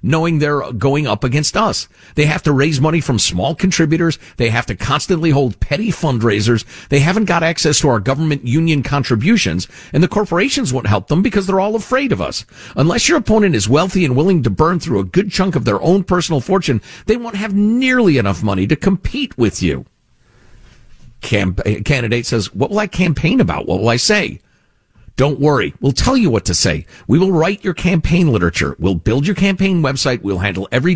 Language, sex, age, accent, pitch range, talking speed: English, male, 50-69, American, 120-180 Hz, 205 wpm